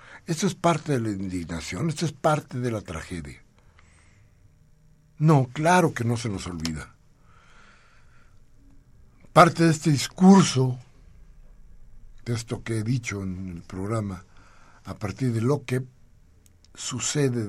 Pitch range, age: 95-120 Hz, 60-79